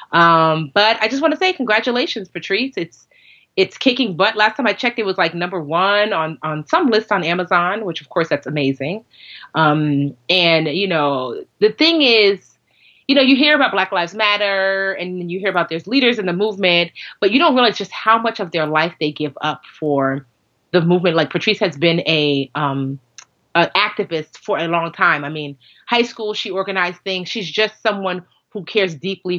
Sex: female